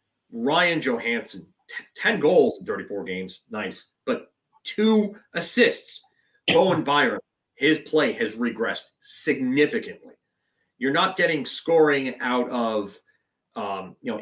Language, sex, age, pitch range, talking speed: English, male, 30-49, 115-175 Hz, 120 wpm